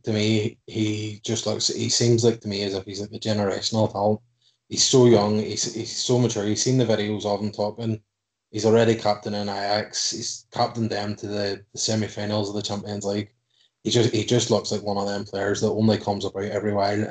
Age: 20-39